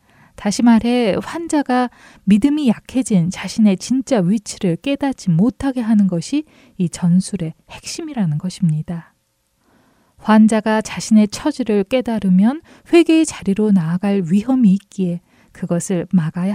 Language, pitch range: Korean, 180-245 Hz